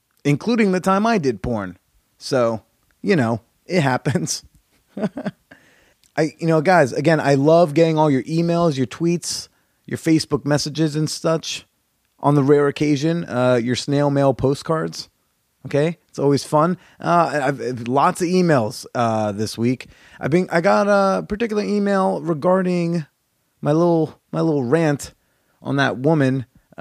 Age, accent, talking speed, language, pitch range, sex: 30-49, American, 150 wpm, English, 115-160 Hz, male